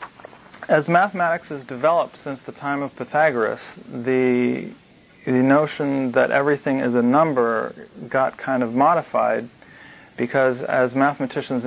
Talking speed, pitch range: 125 wpm, 115-135 Hz